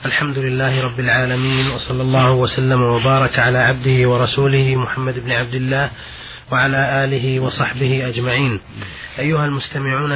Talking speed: 125 wpm